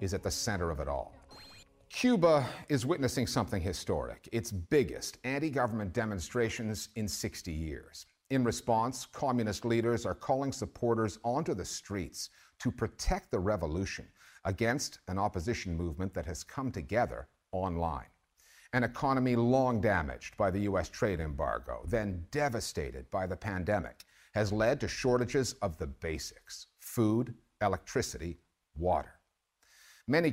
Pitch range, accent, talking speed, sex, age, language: 95-125 Hz, American, 135 wpm, male, 50-69, English